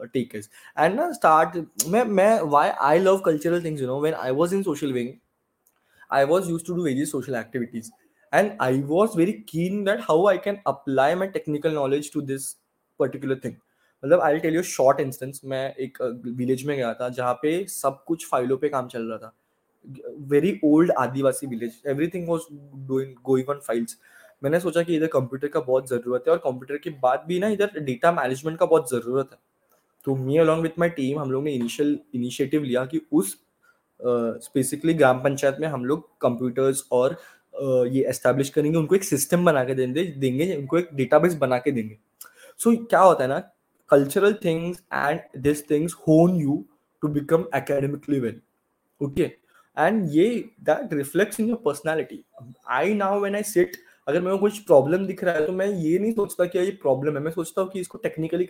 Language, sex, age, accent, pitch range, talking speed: Hindi, male, 20-39, native, 130-170 Hz, 185 wpm